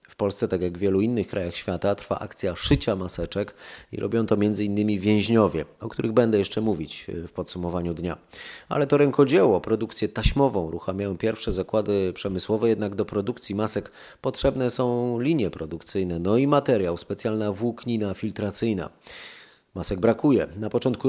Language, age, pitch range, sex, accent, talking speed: Polish, 30-49, 100-120 Hz, male, native, 150 wpm